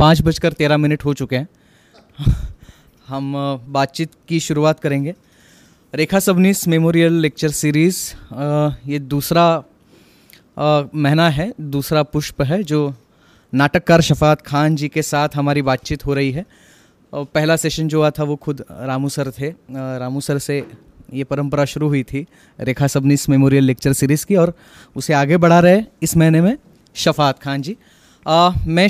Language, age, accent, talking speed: Marathi, 20-39, native, 145 wpm